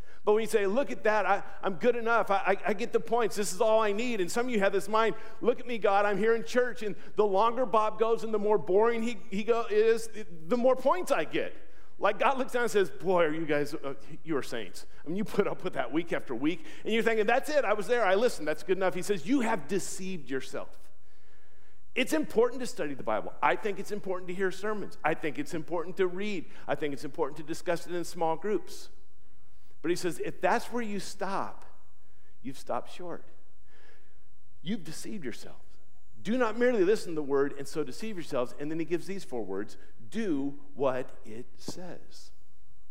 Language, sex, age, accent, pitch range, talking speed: English, male, 50-69, American, 145-225 Hz, 225 wpm